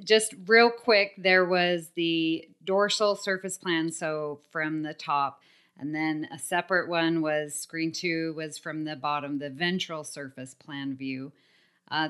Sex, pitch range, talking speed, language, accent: female, 160-185 Hz, 155 wpm, English, American